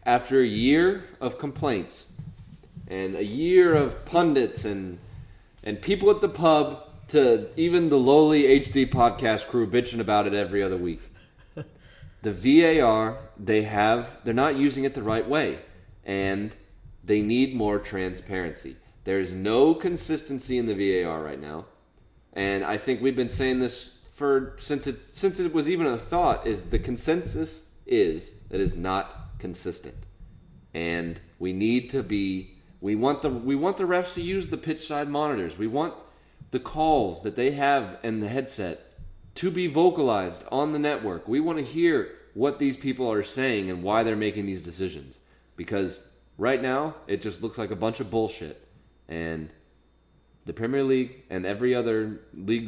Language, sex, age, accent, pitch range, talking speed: English, male, 30-49, American, 95-145 Hz, 165 wpm